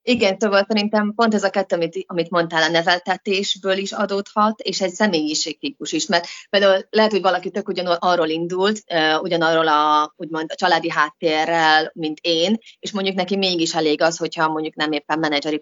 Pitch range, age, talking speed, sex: 160-195 Hz, 30-49, 175 wpm, female